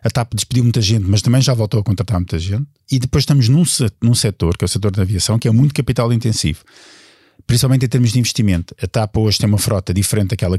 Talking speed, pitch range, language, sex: 240 wpm, 100-125 Hz, Portuguese, male